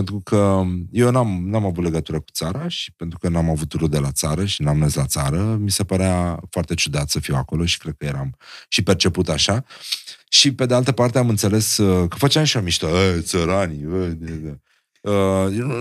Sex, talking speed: male, 195 wpm